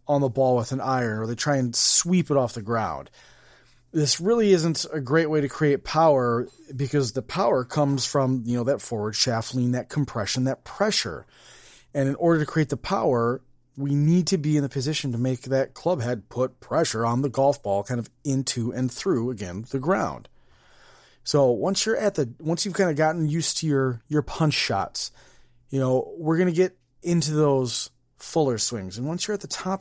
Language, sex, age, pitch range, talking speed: English, male, 30-49, 125-160 Hz, 210 wpm